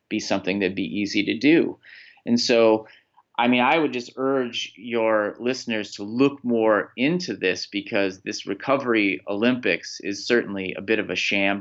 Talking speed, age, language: 175 wpm, 30-49, English